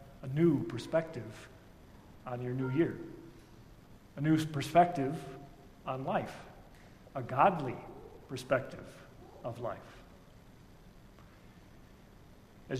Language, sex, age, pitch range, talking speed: English, male, 50-69, 130-175 Hz, 85 wpm